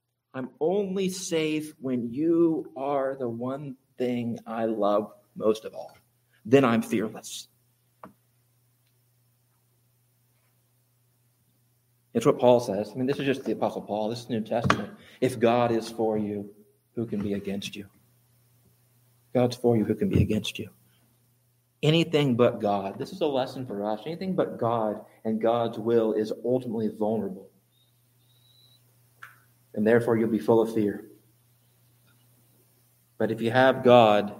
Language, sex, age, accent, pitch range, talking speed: English, male, 40-59, American, 115-130 Hz, 145 wpm